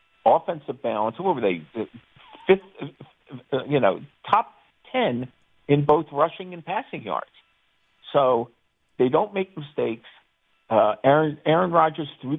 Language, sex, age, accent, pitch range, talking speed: English, male, 50-69, American, 120-165 Hz, 125 wpm